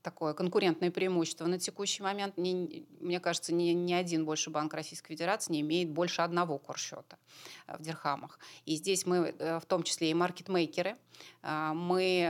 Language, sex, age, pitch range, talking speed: Russian, female, 30-49, 155-185 Hz, 150 wpm